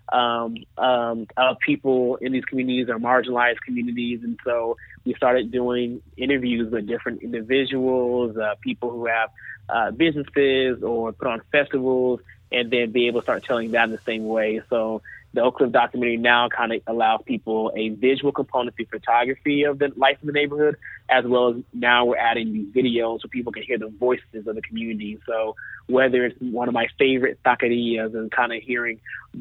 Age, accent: 20-39, American